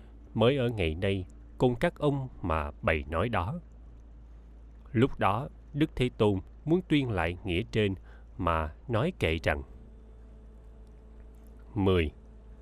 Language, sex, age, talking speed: Vietnamese, male, 20-39, 125 wpm